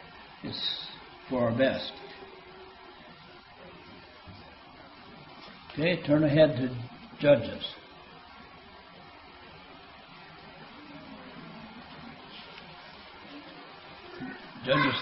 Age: 60-79